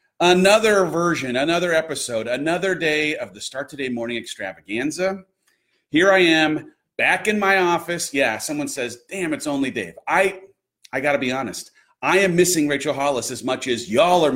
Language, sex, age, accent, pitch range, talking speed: English, male, 40-59, American, 150-210 Hz, 175 wpm